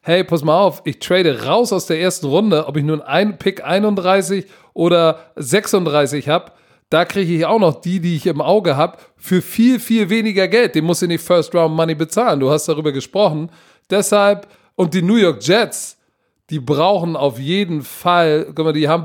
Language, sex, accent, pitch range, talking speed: German, male, German, 150-185 Hz, 200 wpm